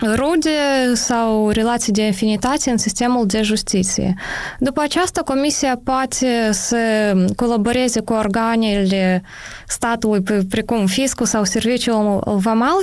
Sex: female